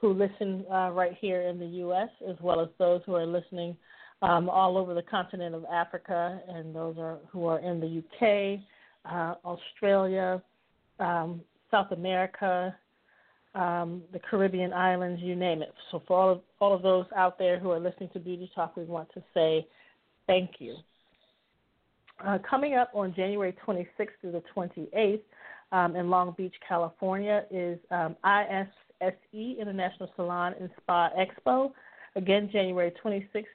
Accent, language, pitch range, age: American, English, 175-195 Hz, 40-59